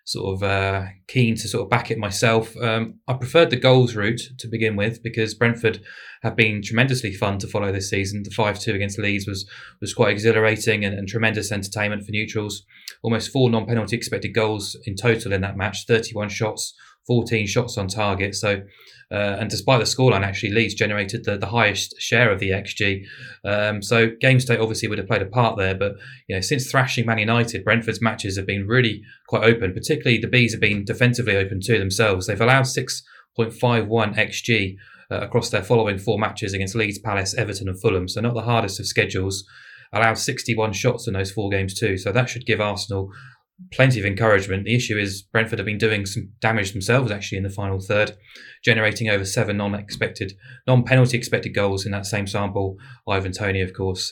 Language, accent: English, British